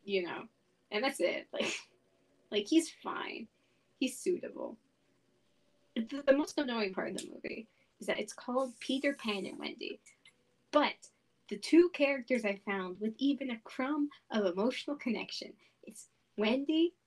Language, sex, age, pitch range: English, female, 20-39, 200-275 Hz